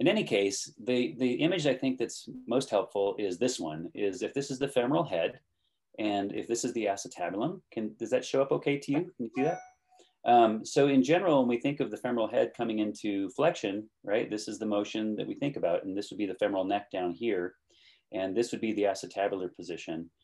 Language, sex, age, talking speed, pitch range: English, male, 30-49, 230 wpm, 100-125 Hz